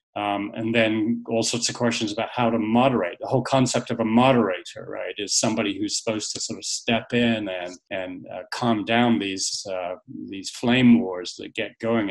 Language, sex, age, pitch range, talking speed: Portuguese, male, 40-59, 105-130 Hz, 200 wpm